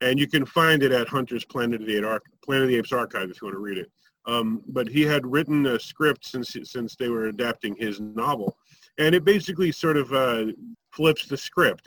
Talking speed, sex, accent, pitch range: 225 wpm, male, American, 120-155 Hz